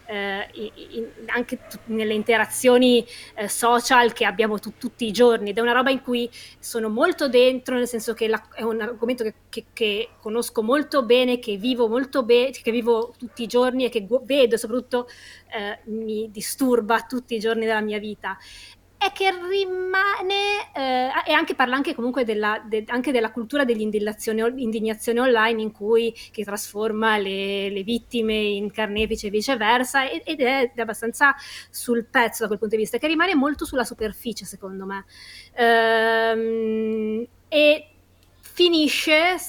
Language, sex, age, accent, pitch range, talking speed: Italian, female, 20-39, native, 220-260 Hz, 165 wpm